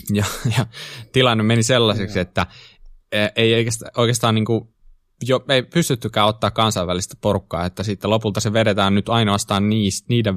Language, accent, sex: Finnish, native, male